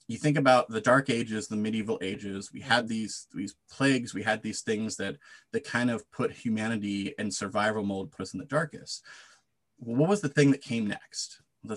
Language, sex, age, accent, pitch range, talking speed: English, male, 30-49, American, 105-135 Hz, 210 wpm